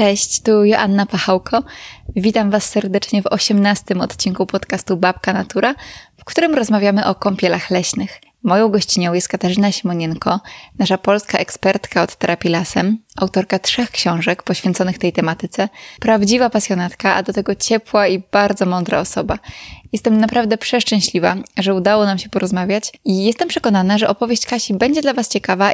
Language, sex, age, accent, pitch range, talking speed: Polish, female, 20-39, native, 190-220 Hz, 150 wpm